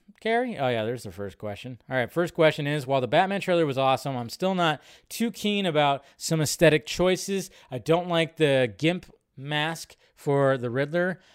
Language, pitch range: English, 125-160 Hz